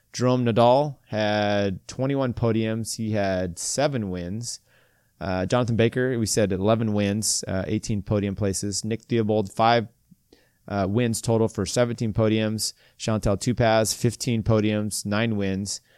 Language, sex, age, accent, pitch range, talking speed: English, male, 30-49, American, 105-120 Hz, 130 wpm